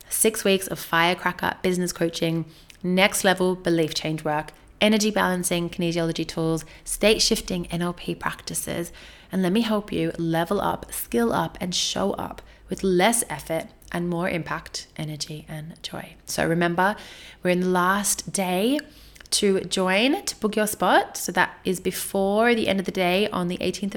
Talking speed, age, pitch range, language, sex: 165 wpm, 20-39, 175-210 Hz, English, female